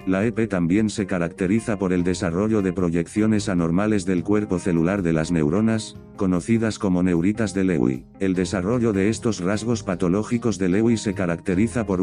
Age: 50-69